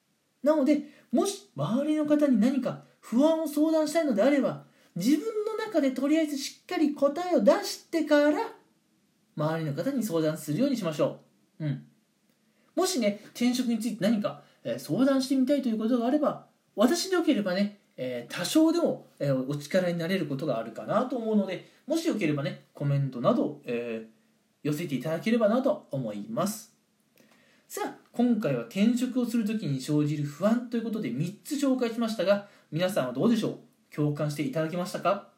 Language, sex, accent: Japanese, male, native